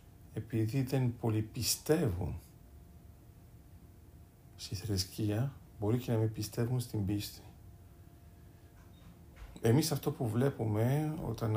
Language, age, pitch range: Greek, 50-69, 90-115 Hz